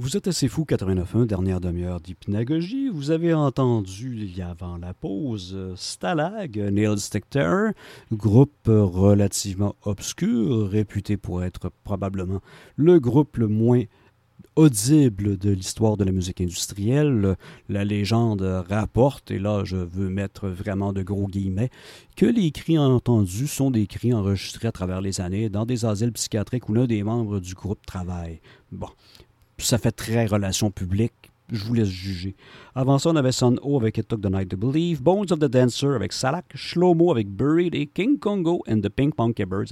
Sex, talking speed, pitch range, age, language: male, 170 wpm, 100-135 Hz, 50-69, French